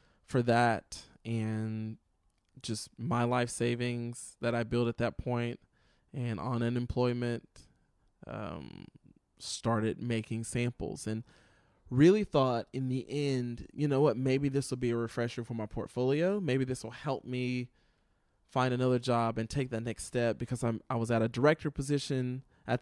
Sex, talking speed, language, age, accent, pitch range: male, 160 wpm, English, 20-39, American, 115-135 Hz